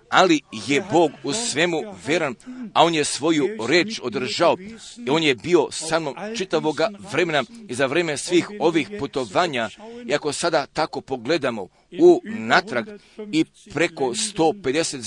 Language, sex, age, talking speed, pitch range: Croatian, male, 40-59, 140 wpm, 140-200 Hz